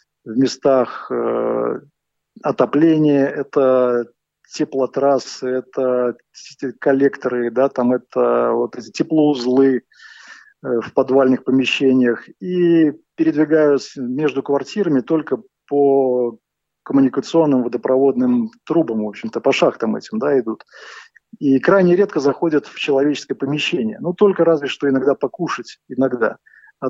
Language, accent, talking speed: Russian, native, 105 wpm